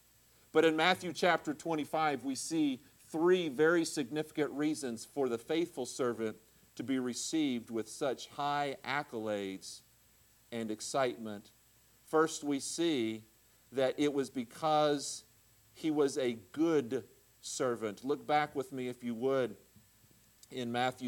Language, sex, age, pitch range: English, male, 50-69, 130-185 Hz